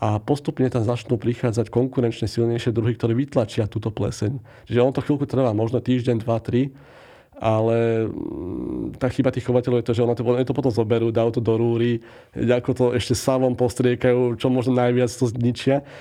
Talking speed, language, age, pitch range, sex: 180 wpm, Slovak, 40-59, 115-130 Hz, male